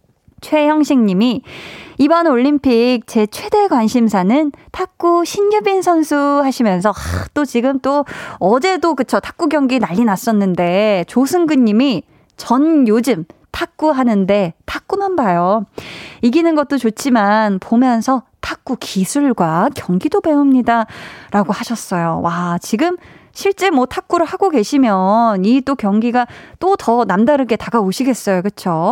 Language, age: Korean, 20-39